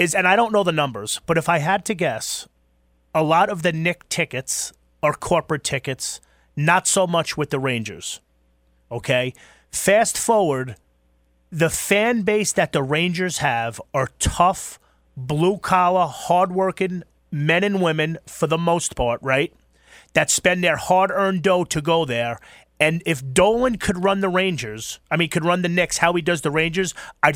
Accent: American